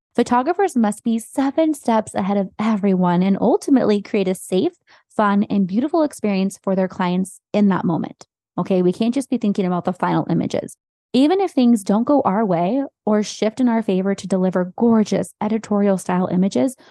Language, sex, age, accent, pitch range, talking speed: English, female, 20-39, American, 190-240 Hz, 180 wpm